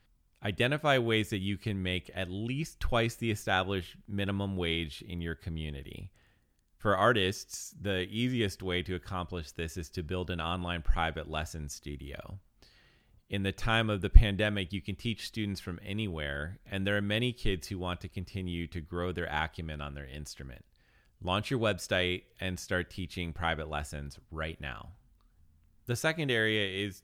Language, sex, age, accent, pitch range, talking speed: English, male, 30-49, American, 80-105 Hz, 165 wpm